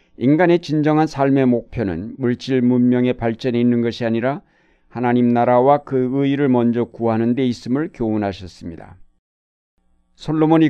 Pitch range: 115-135 Hz